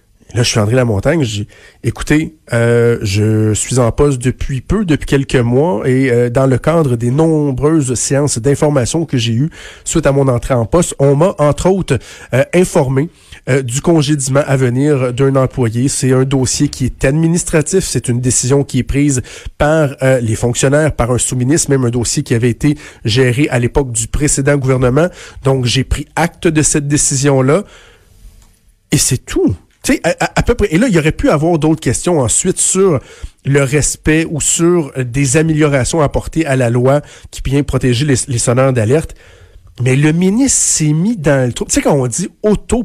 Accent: Canadian